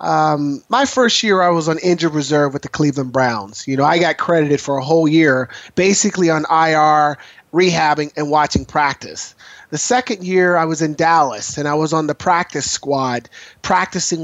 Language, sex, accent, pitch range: English, male, American, 155-190 Hz